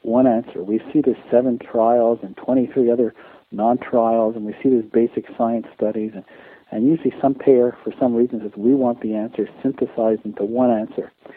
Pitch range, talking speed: 105-125 Hz, 185 wpm